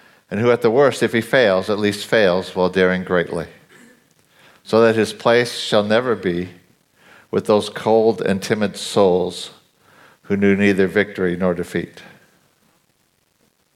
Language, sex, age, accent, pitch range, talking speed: English, male, 50-69, American, 105-130 Hz, 145 wpm